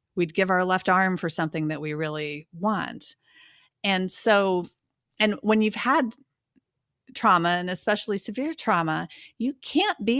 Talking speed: 145 wpm